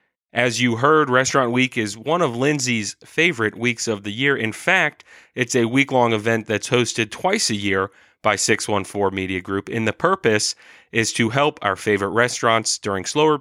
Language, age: English, 30-49